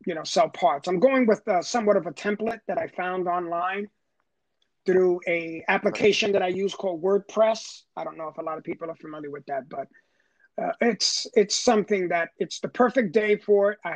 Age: 30-49